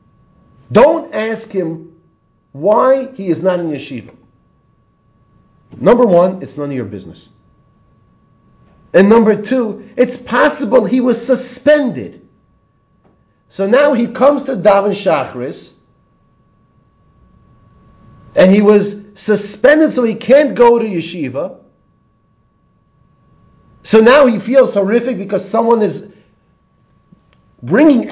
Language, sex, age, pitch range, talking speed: English, male, 40-59, 185-255 Hz, 105 wpm